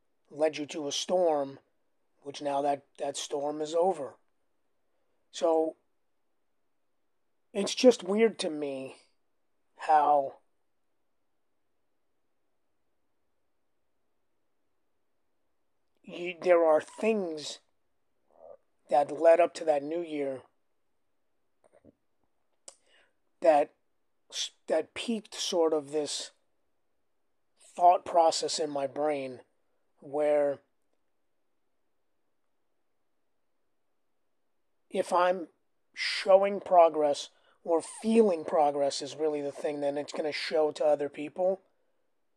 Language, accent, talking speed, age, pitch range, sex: English, American, 85 wpm, 30-49, 145-175 Hz, male